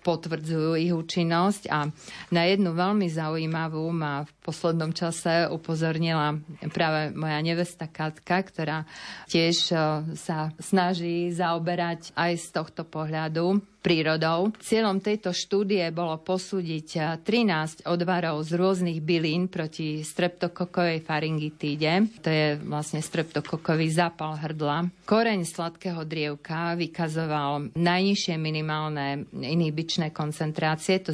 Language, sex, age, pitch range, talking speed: Slovak, female, 40-59, 155-175 Hz, 105 wpm